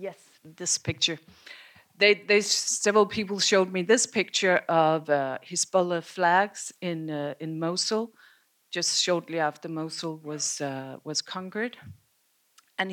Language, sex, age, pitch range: English, female, 50-69, 160-190 Hz